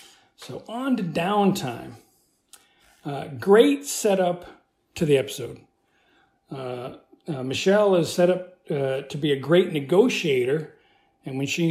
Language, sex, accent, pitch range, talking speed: English, male, American, 145-210 Hz, 130 wpm